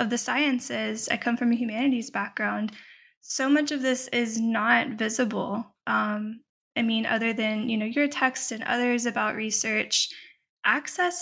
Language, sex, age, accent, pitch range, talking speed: English, female, 10-29, American, 210-245 Hz, 160 wpm